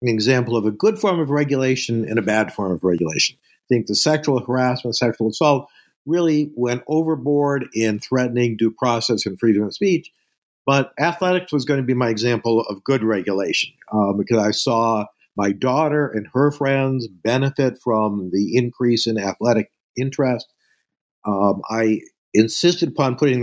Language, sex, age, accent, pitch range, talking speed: English, male, 50-69, American, 110-140 Hz, 165 wpm